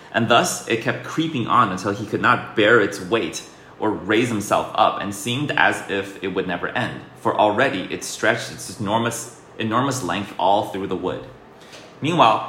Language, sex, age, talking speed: English, male, 30-49, 185 wpm